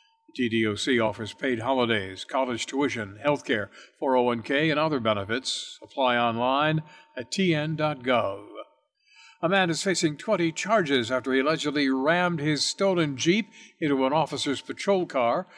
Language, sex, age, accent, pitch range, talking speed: English, male, 60-79, American, 130-180 Hz, 130 wpm